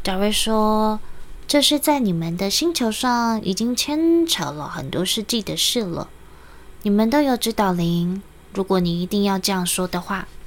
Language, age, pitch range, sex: Chinese, 20-39, 160-225 Hz, female